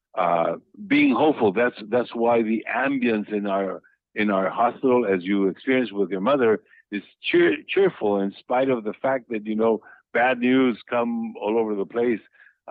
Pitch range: 105-150 Hz